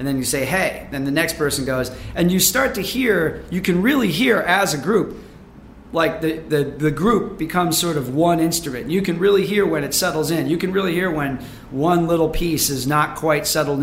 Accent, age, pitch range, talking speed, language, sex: American, 40-59, 140-170 Hz, 225 wpm, English, male